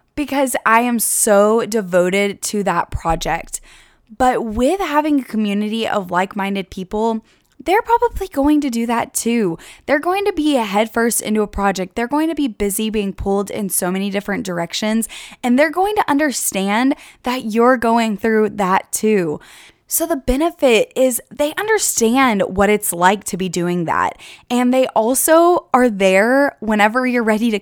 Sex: female